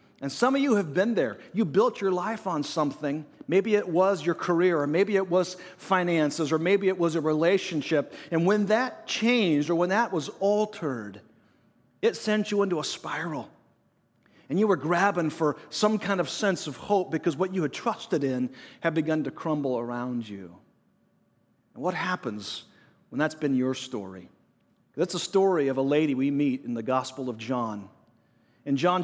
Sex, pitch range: male, 145-195 Hz